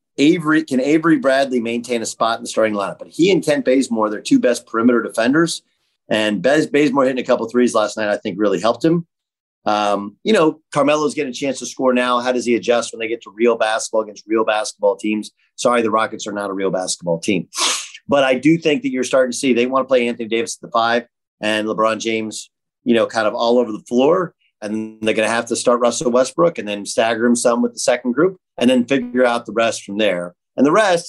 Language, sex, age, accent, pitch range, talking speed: English, male, 30-49, American, 110-135 Hz, 240 wpm